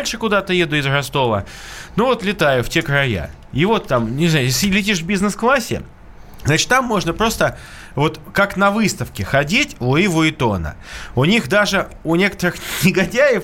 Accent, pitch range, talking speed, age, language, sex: native, 130-195 Hz, 160 wpm, 20-39, Russian, male